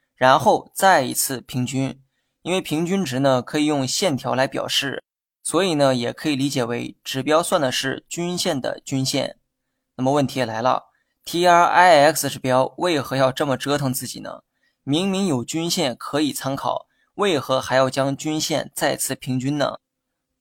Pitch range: 130-160 Hz